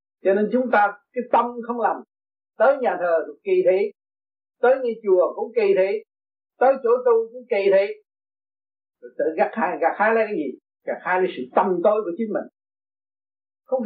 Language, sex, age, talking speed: Vietnamese, male, 60-79, 185 wpm